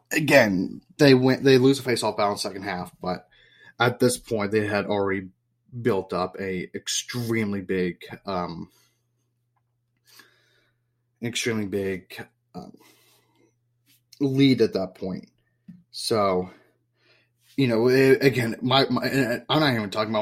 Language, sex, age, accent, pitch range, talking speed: English, male, 30-49, American, 105-125 Hz, 130 wpm